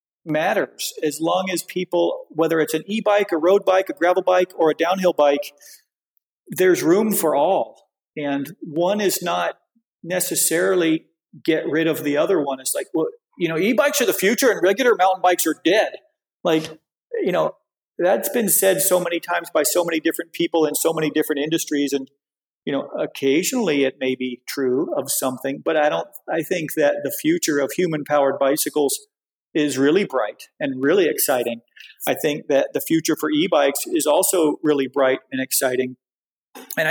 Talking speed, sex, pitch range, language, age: 175 wpm, male, 145-190 Hz, English, 40-59